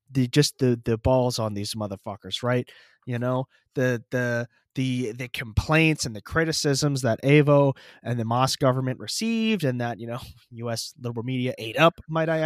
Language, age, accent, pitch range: English, 20-39, American, 130-190 Hz